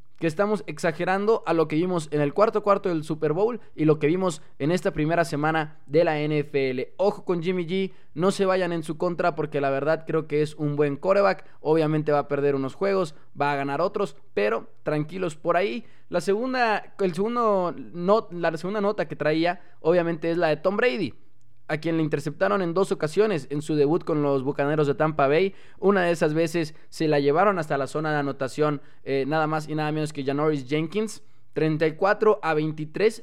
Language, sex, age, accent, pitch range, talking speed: Spanish, male, 20-39, Mexican, 145-185 Hz, 200 wpm